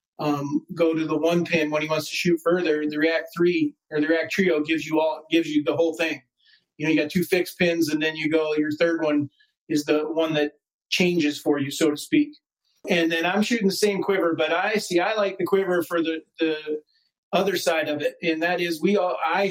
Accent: American